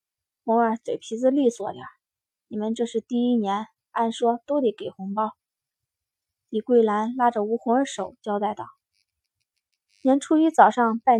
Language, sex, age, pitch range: Chinese, female, 20-39, 215-265 Hz